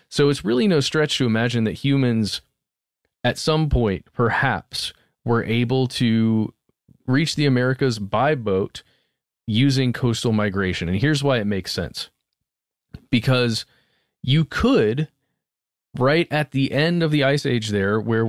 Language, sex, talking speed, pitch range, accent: English, male, 140 wpm, 110-150 Hz, American